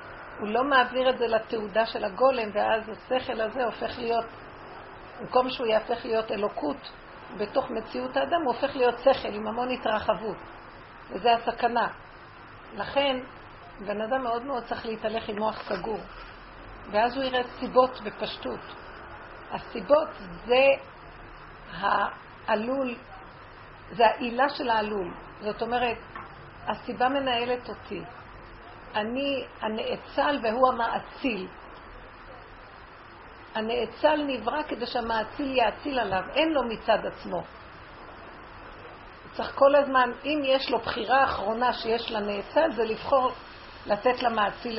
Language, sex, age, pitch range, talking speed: Hebrew, female, 50-69, 220-255 Hz, 115 wpm